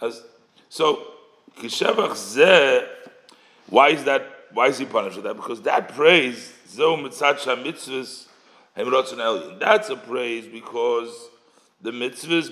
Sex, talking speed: male, 100 wpm